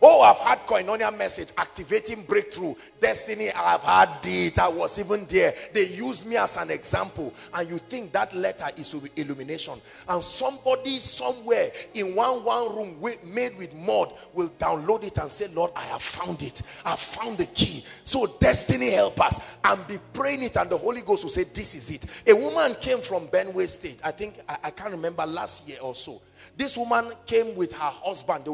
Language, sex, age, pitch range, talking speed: English, male, 40-59, 145-245 Hz, 195 wpm